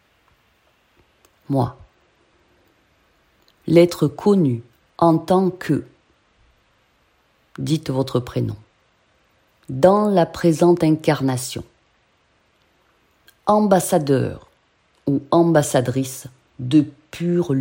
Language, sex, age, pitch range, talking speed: French, female, 50-69, 120-175 Hz, 60 wpm